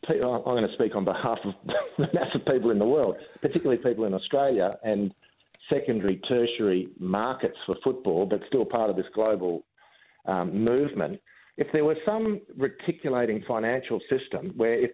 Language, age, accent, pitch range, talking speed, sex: English, 50-69, Australian, 105-130 Hz, 160 wpm, male